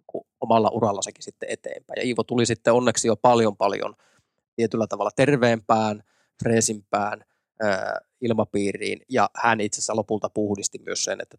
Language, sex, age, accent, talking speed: Finnish, male, 20-39, native, 130 wpm